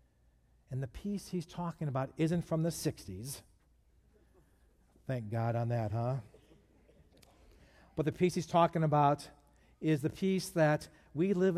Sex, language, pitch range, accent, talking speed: male, English, 105-155 Hz, American, 140 wpm